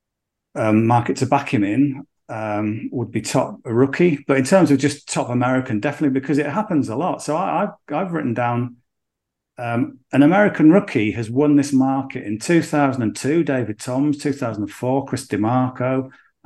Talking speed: 170 wpm